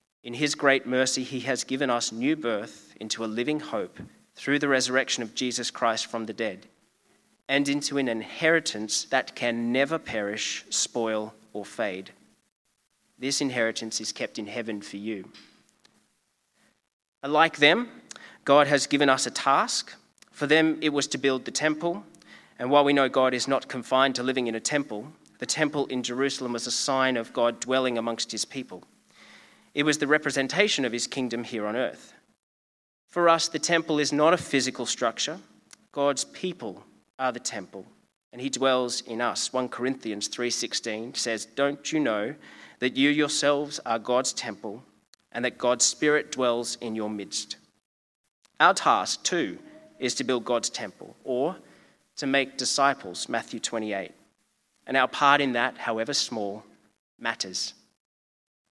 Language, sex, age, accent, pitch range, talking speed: English, male, 30-49, Australian, 115-145 Hz, 160 wpm